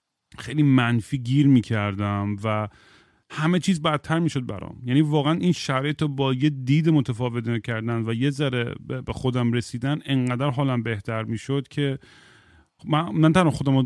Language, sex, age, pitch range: Persian, male, 30-49, 120-145 Hz